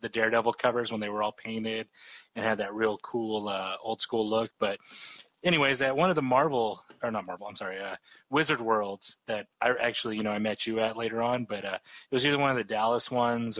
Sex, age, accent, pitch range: male, 30-49, American, 105-125 Hz